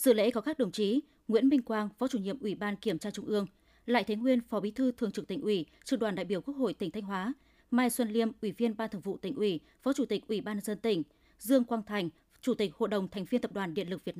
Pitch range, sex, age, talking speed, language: 200-250 Hz, female, 20-39, 290 wpm, Vietnamese